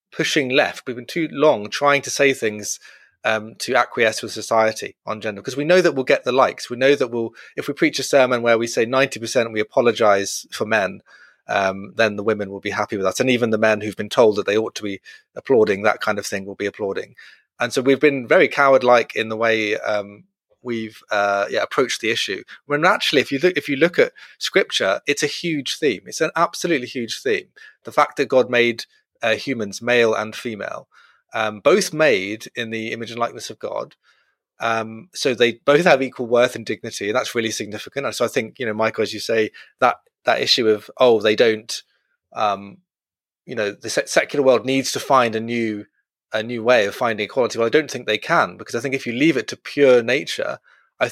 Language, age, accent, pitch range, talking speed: English, 30-49, British, 110-140 Hz, 225 wpm